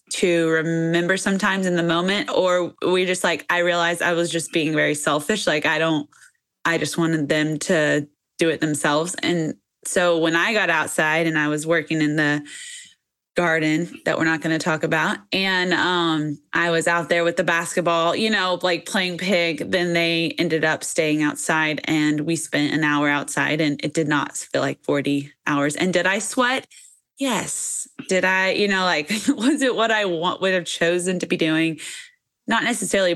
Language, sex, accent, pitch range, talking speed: English, female, American, 155-180 Hz, 190 wpm